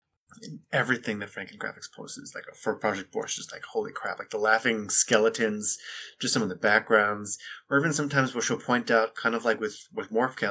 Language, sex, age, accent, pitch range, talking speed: English, male, 20-39, American, 100-130 Hz, 210 wpm